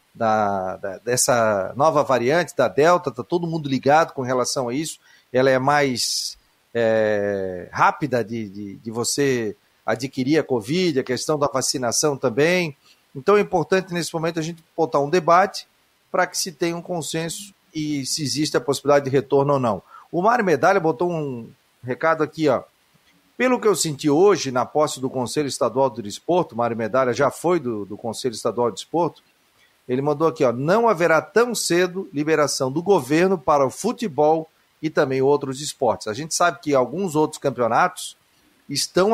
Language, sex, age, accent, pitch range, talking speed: Portuguese, male, 40-59, Brazilian, 130-170 Hz, 165 wpm